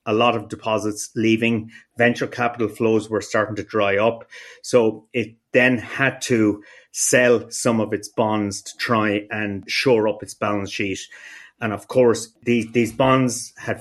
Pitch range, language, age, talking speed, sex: 105-120 Hz, English, 30-49, 165 wpm, male